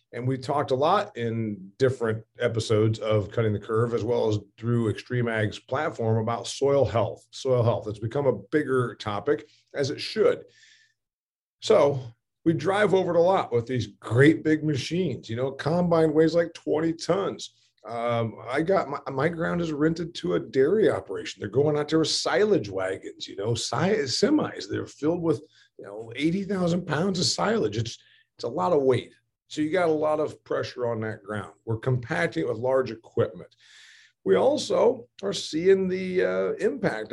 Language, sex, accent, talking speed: English, male, American, 180 wpm